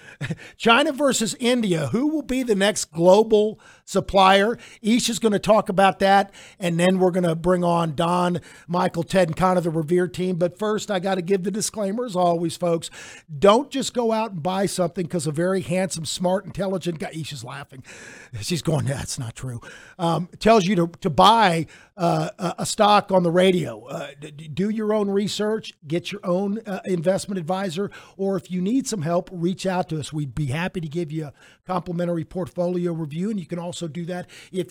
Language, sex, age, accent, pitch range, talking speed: English, male, 50-69, American, 170-195 Hz, 200 wpm